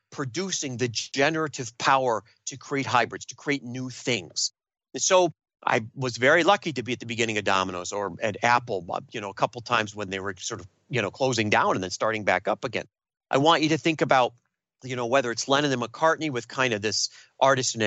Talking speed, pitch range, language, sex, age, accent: 225 wpm, 110-155 Hz, English, male, 40-59, American